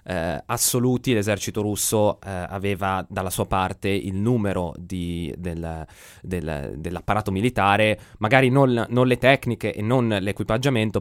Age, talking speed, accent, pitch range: 20-39, 130 wpm, native, 95-120 Hz